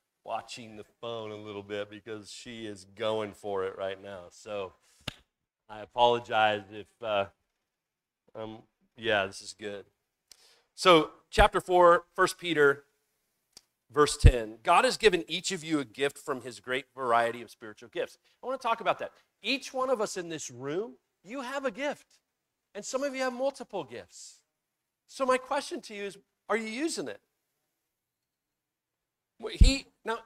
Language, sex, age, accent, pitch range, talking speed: English, male, 40-59, American, 135-220 Hz, 160 wpm